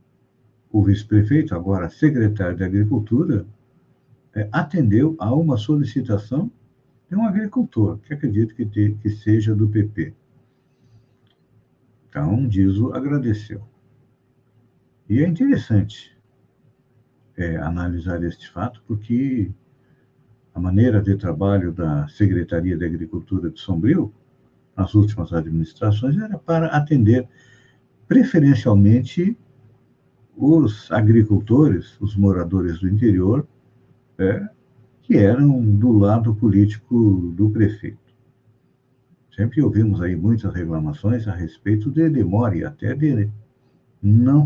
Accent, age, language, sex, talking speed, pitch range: Brazilian, 60-79, Portuguese, male, 100 wpm, 100-130 Hz